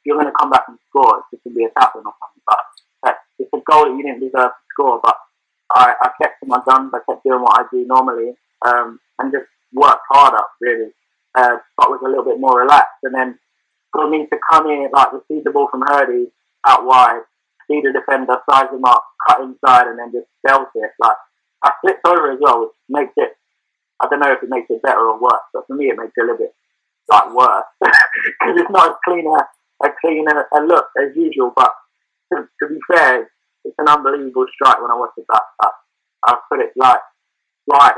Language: English